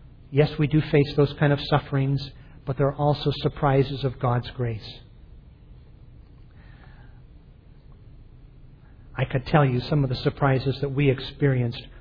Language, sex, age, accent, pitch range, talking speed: English, male, 40-59, American, 120-140 Hz, 135 wpm